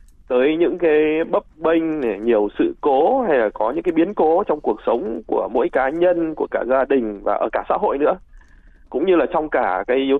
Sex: male